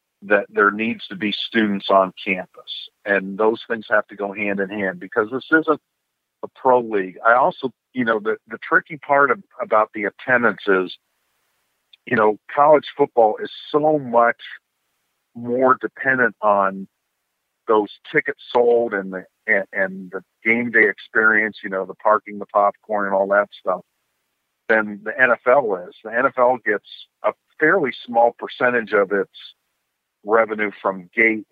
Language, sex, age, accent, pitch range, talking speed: English, male, 50-69, American, 100-125 Hz, 160 wpm